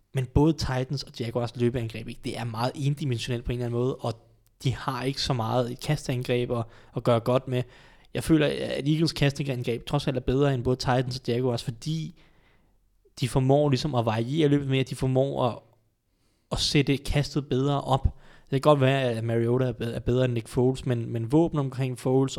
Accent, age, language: native, 20-39, Danish